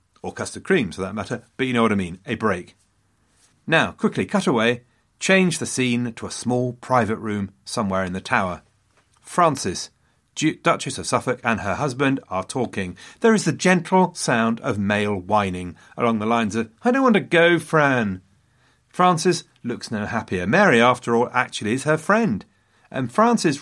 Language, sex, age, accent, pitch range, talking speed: English, male, 40-59, British, 100-155 Hz, 180 wpm